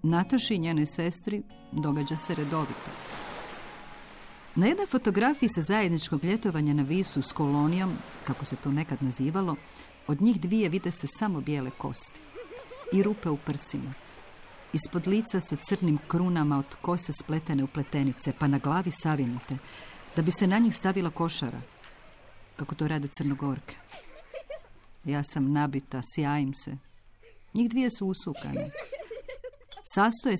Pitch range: 140-195 Hz